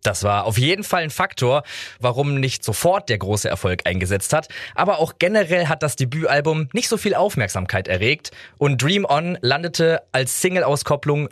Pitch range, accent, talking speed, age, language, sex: 115-160 Hz, German, 170 wpm, 20-39, German, male